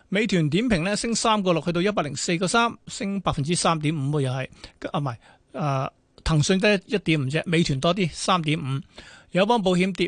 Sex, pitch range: male, 155-195 Hz